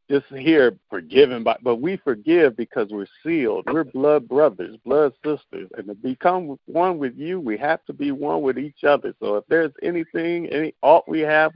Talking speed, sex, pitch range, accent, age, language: 190 wpm, male, 140-195 Hz, American, 50-69, English